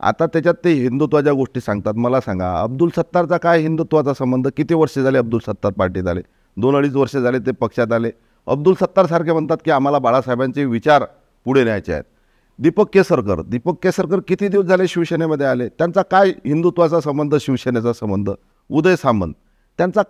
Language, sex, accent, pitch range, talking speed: Marathi, male, native, 120-170 Hz, 160 wpm